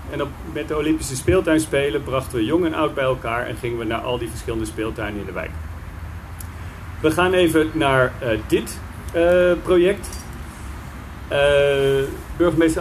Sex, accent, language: male, Dutch, Dutch